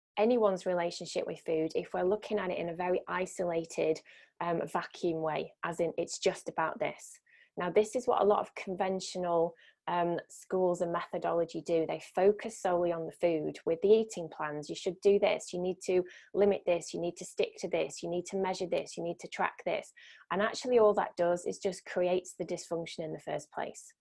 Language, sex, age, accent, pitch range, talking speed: English, female, 20-39, British, 175-205 Hz, 210 wpm